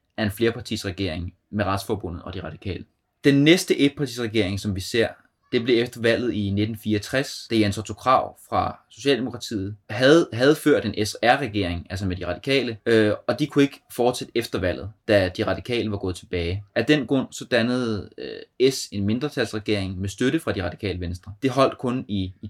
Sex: male